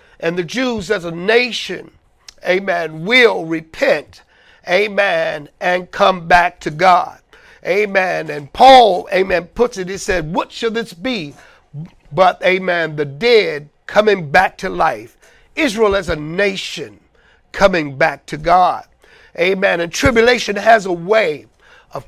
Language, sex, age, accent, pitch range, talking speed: English, male, 50-69, American, 180-240 Hz, 135 wpm